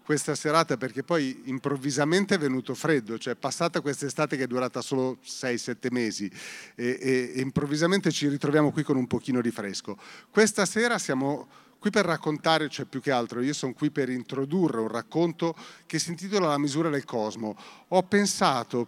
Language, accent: Italian, native